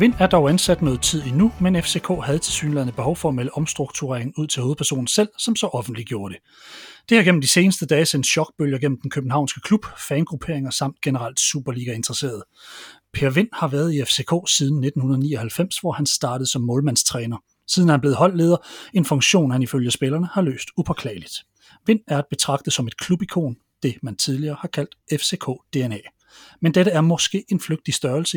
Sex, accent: male, native